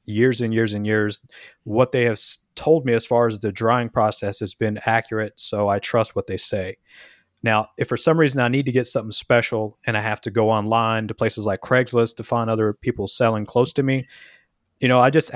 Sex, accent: male, American